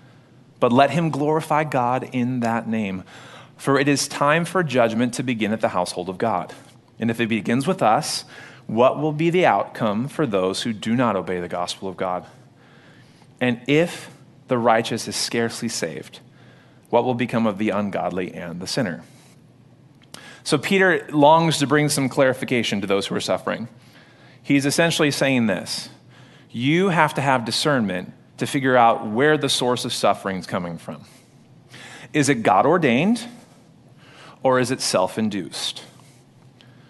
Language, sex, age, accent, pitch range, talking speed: English, male, 30-49, American, 115-140 Hz, 160 wpm